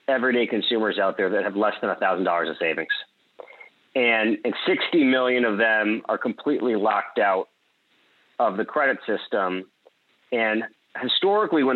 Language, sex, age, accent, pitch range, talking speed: English, male, 40-59, American, 110-135 Hz, 155 wpm